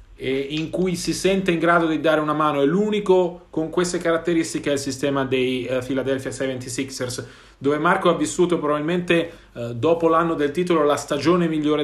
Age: 40-59